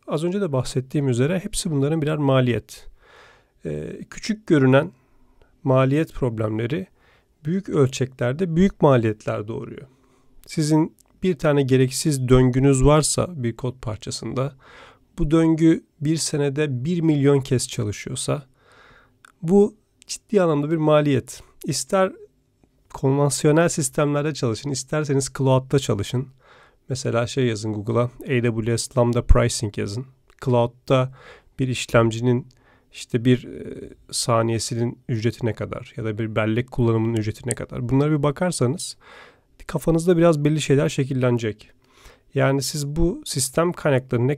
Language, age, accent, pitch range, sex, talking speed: Turkish, 40-59, native, 120-155 Hz, male, 120 wpm